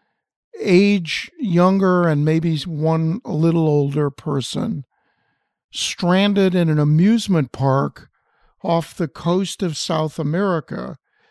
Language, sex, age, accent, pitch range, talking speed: English, male, 50-69, American, 145-180 Hz, 105 wpm